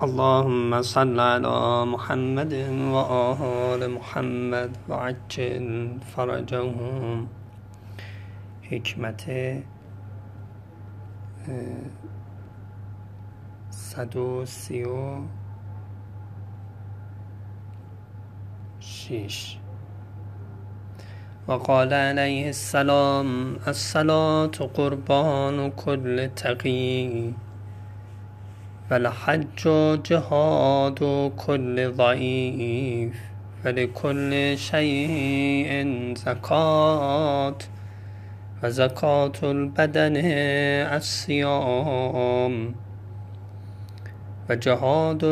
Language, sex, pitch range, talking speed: Persian, male, 105-140 Hz, 40 wpm